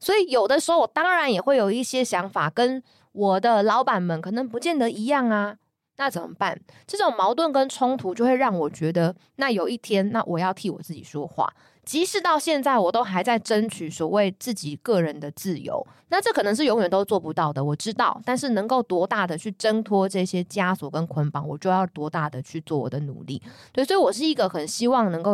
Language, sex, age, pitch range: Chinese, female, 20-39, 160-240 Hz